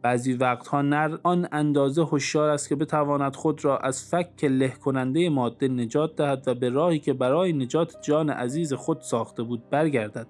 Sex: male